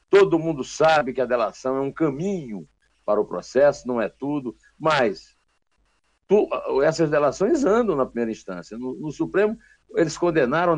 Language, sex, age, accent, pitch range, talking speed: Portuguese, male, 60-79, Brazilian, 135-190 Hz, 155 wpm